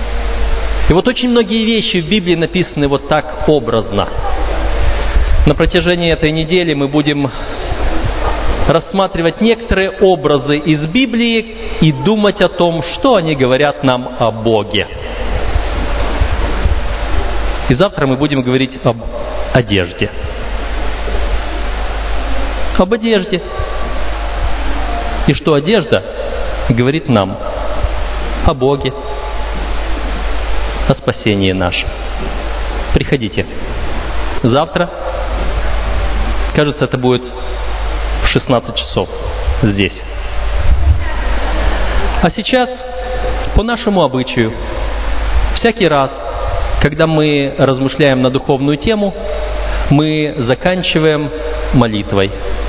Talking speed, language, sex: 85 wpm, Russian, male